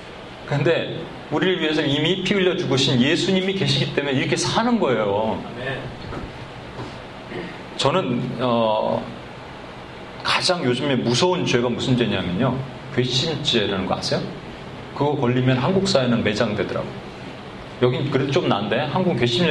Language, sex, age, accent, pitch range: Korean, male, 40-59, native, 120-180 Hz